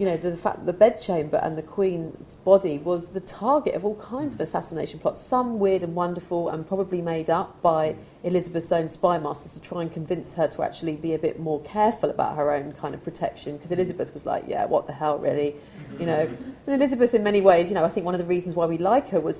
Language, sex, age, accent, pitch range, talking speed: English, female, 40-59, British, 165-210 Hz, 245 wpm